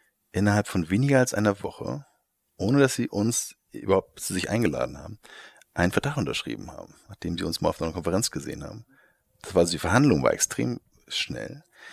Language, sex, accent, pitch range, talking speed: German, male, German, 85-120 Hz, 180 wpm